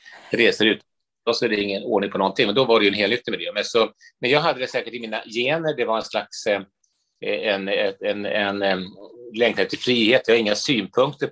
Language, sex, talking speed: Swedish, male, 215 wpm